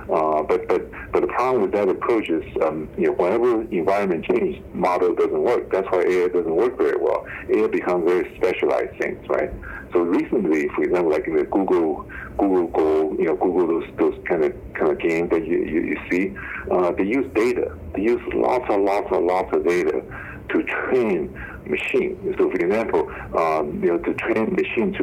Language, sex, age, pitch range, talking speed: English, male, 60-79, 355-405 Hz, 195 wpm